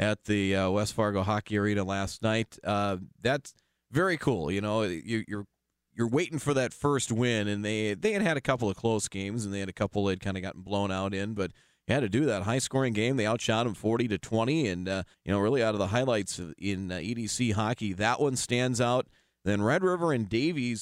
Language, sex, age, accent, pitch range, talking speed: English, male, 30-49, American, 100-125 Hz, 225 wpm